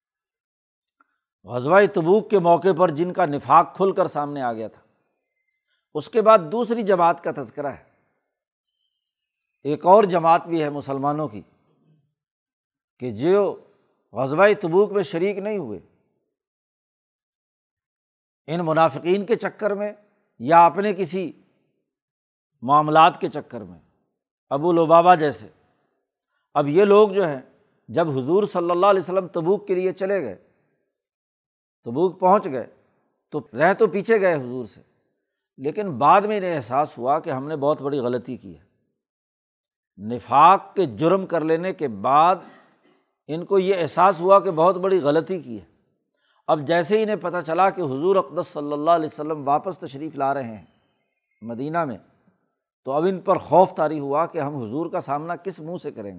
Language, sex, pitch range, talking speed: Urdu, male, 145-190 Hz, 155 wpm